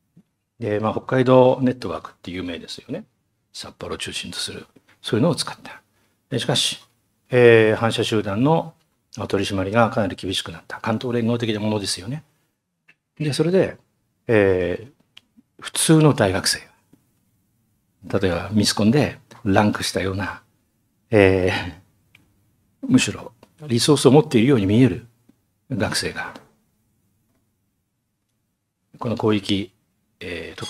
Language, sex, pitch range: Japanese, male, 100-130 Hz